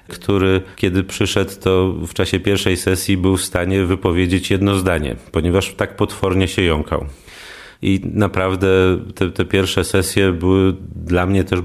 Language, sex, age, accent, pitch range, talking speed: English, male, 40-59, Polish, 90-100 Hz, 150 wpm